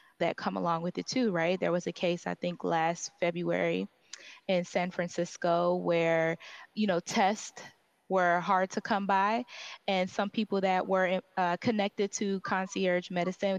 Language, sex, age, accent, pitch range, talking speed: English, female, 20-39, American, 180-220 Hz, 165 wpm